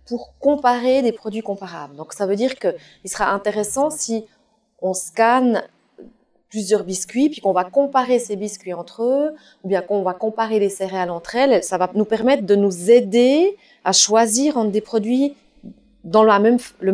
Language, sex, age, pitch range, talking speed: French, female, 30-49, 200-260 Hz, 170 wpm